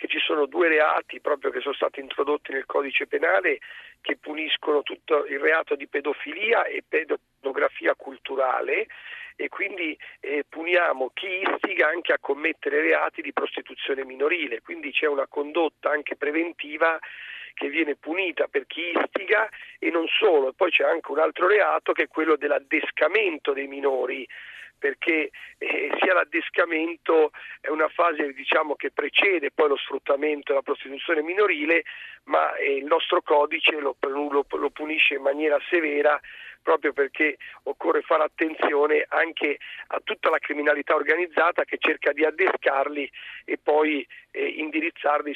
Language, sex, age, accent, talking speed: Italian, male, 40-59, native, 145 wpm